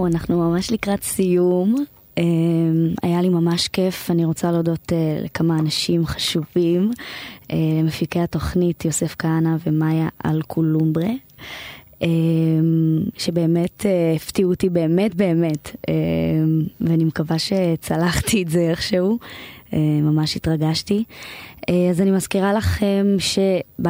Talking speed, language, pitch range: 95 wpm, Hebrew, 160-180 Hz